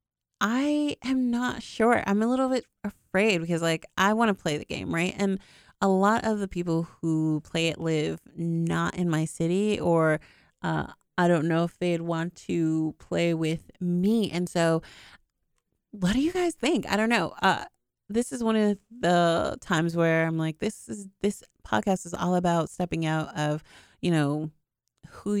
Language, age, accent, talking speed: English, 30-49, American, 180 wpm